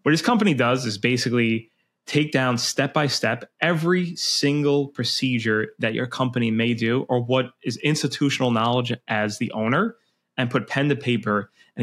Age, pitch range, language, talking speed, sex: 20-39, 120-145 Hz, English, 165 wpm, male